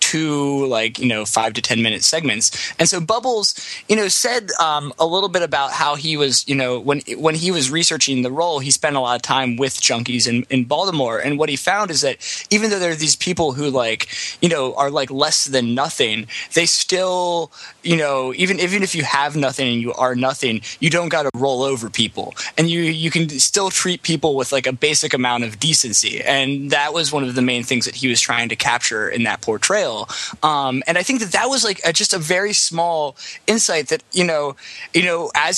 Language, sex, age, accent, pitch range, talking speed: English, male, 20-39, American, 130-170 Hz, 225 wpm